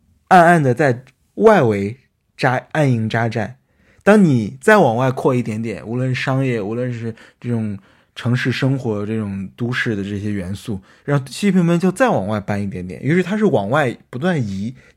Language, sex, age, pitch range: Chinese, male, 20-39, 110-150 Hz